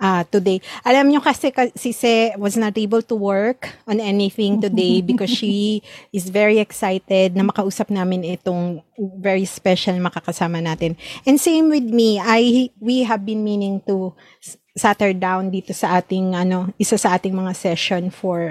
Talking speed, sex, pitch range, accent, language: 165 wpm, female, 185-225 Hz, Filipino, English